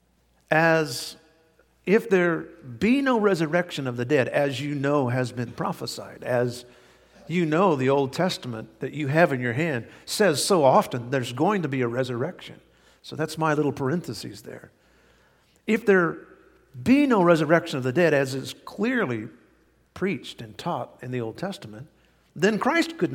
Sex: male